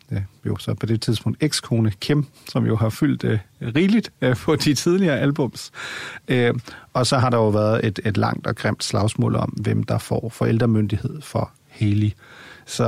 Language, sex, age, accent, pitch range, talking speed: Danish, male, 40-59, native, 110-130 Hz, 180 wpm